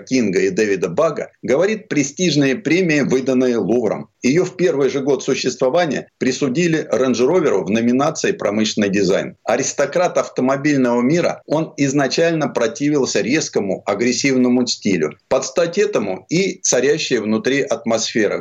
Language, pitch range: Russian, 120-165 Hz